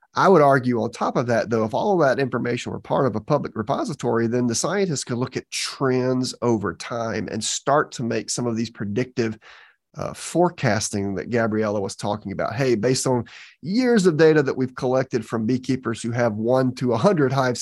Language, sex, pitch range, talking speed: English, male, 110-130 Hz, 200 wpm